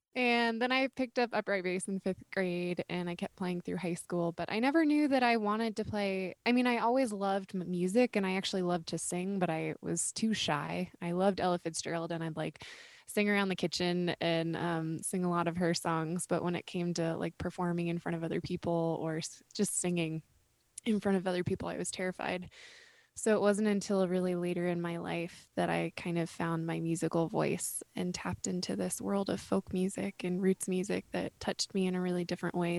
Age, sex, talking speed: 20-39, female, 220 wpm